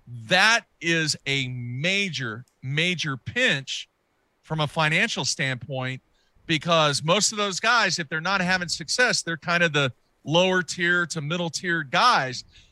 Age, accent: 40-59, American